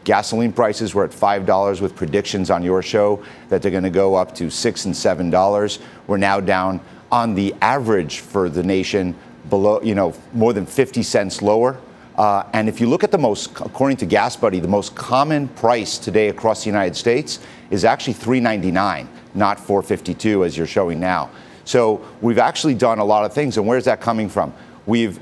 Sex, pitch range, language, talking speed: male, 100-120 Hz, English, 200 wpm